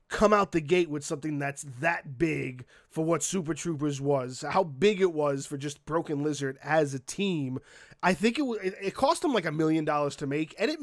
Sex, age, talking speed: male, 20-39, 220 wpm